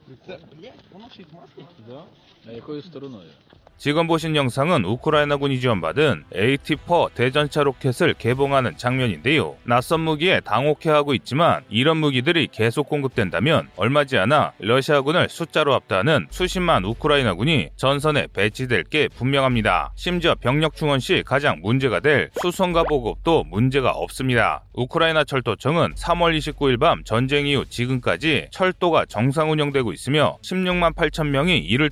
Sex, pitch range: male, 125-155 Hz